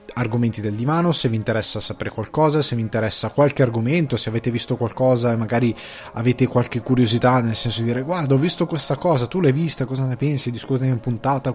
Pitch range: 110-140 Hz